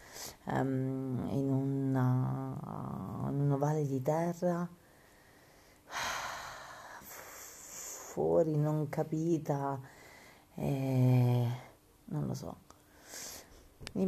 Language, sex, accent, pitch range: Italian, female, native, 125-150 Hz